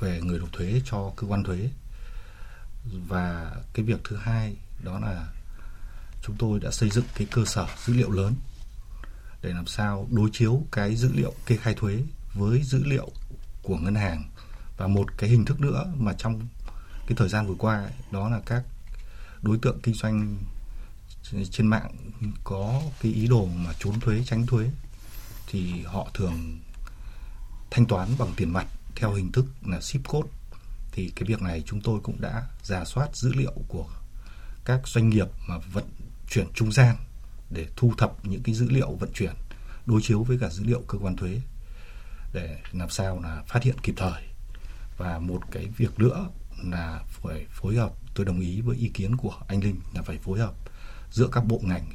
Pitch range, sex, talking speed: 95-115 Hz, male, 185 wpm